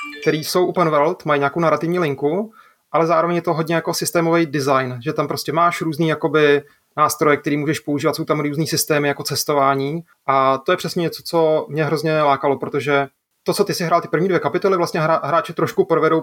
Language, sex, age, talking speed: Czech, male, 30-49, 205 wpm